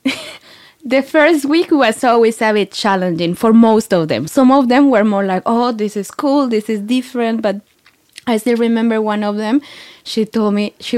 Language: English